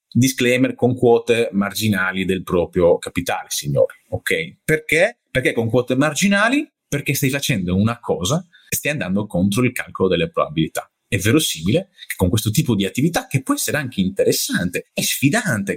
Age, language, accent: 30-49, Italian, native